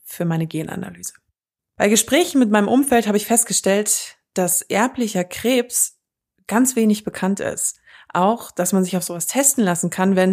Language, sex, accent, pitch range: German, female, German, 185-230 Hz